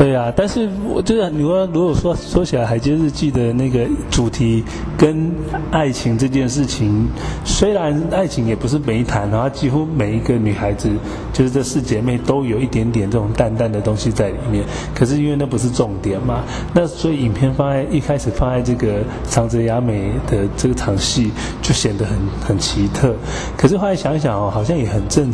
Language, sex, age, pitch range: Chinese, male, 20-39, 110-135 Hz